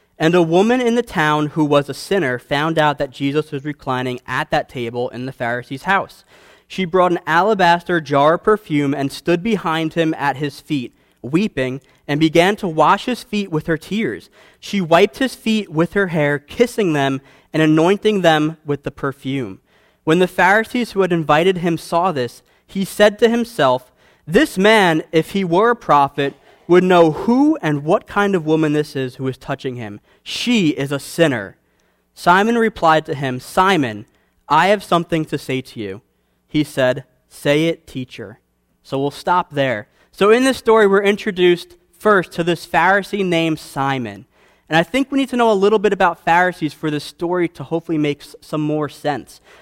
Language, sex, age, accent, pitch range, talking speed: English, male, 20-39, American, 140-195 Hz, 185 wpm